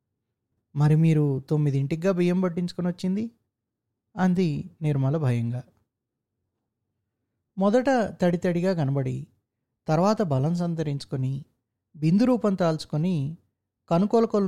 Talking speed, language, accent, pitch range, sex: 80 wpm, Telugu, native, 120-180 Hz, male